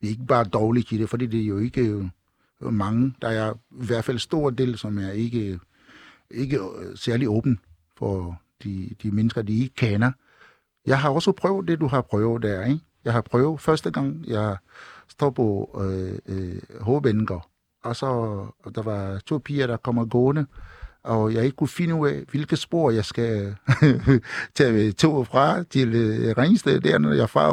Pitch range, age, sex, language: 110-140 Hz, 60-79, male, Danish